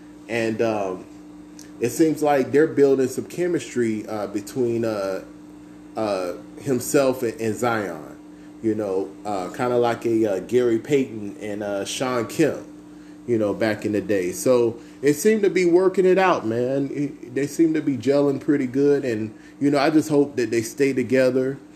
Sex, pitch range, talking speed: male, 100-140 Hz, 170 wpm